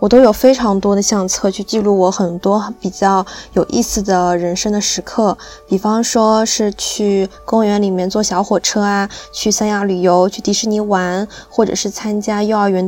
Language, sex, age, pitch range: Chinese, female, 20-39, 190-220 Hz